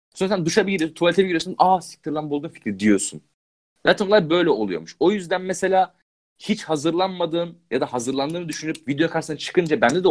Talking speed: 180 wpm